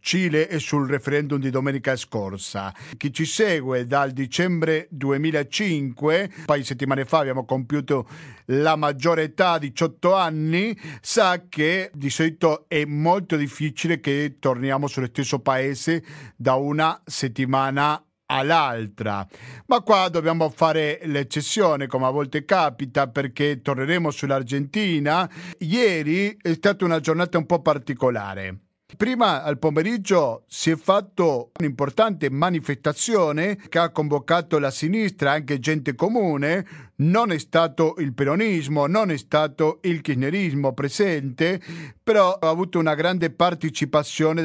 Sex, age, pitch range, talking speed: male, 50-69, 140-180 Hz, 125 wpm